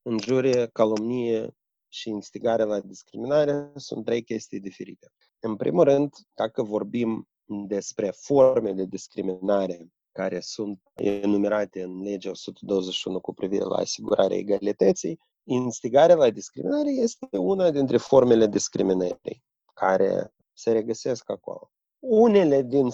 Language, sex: Romanian, male